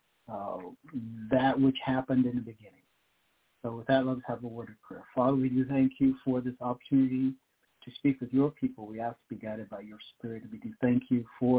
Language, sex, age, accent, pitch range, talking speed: English, male, 50-69, American, 120-140 Hz, 215 wpm